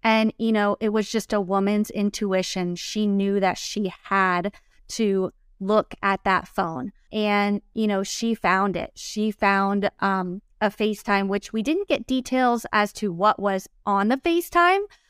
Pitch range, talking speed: 200-230 Hz, 165 wpm